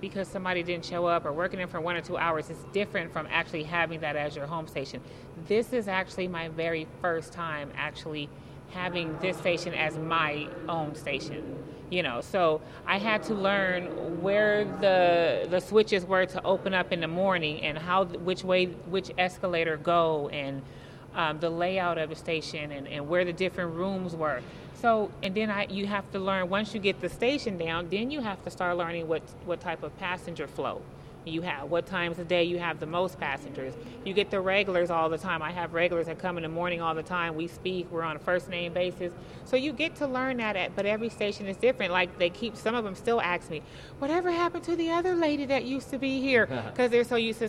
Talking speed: 220 wpm